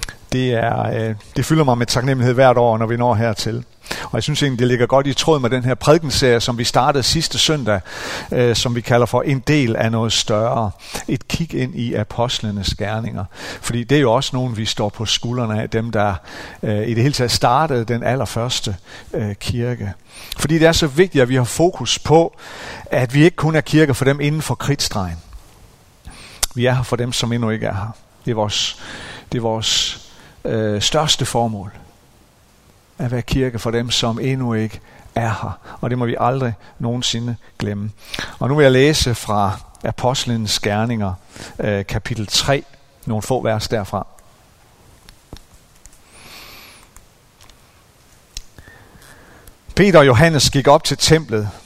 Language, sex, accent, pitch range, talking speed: Danish, male, native, 110-135 Hz, 170 wpm